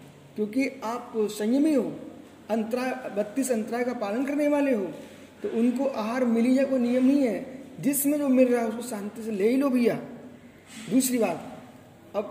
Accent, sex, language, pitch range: native, male, Hindi, 205-250 Hz